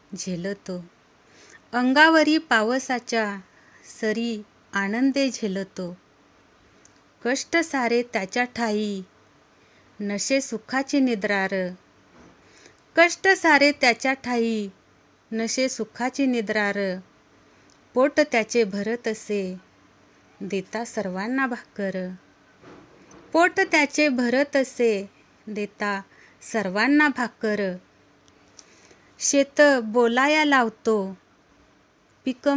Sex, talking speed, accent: female, 70 wpm, native